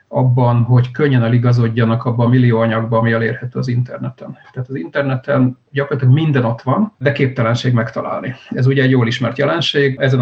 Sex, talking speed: male, 170 wpm